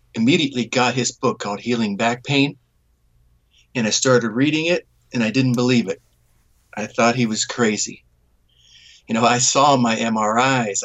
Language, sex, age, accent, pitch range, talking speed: English, male, 50-69, American, 85-130 Hz, 160 wpm